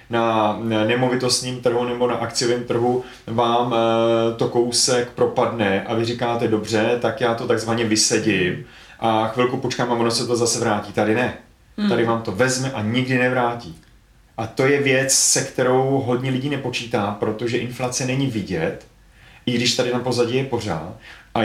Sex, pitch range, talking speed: male, 110-125 Hz, 165 wpm